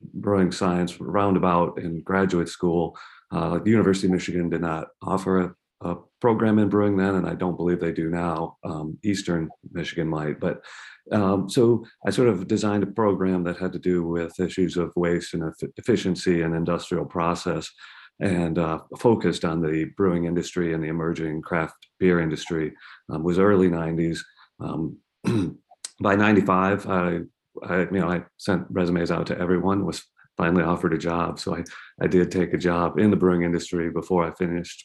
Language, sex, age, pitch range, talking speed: English, male, 40-59, 85-95 Hz, 175 wpm